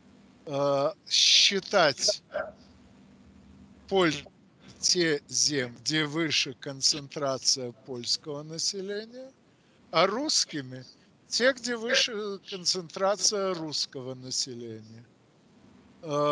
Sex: male